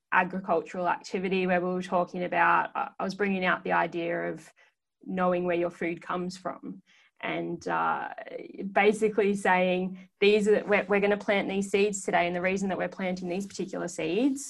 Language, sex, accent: English, female, Australian